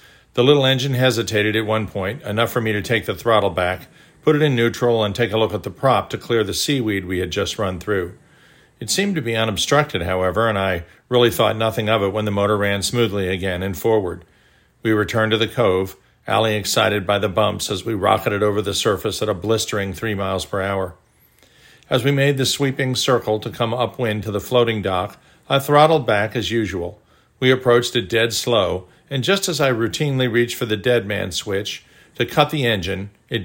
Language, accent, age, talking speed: English, American, 50-69, 210 wpm